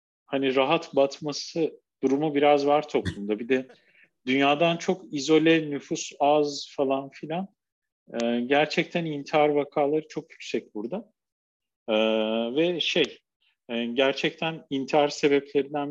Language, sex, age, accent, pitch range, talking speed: Turkish, male, 50-69, native, 130-180 Hz, 110 wpm